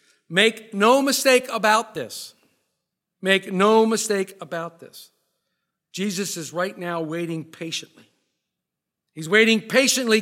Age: 50-69